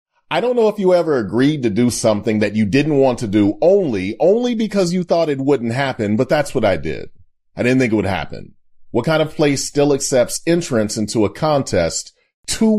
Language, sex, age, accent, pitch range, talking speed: English, male, 30-49, American, 105-150 Hz, 215 wpm